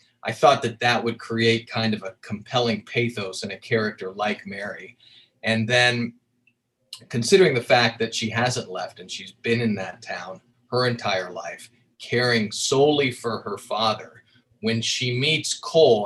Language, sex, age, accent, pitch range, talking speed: English, male, 30-49, American, 110-125 Hz, 160 wpm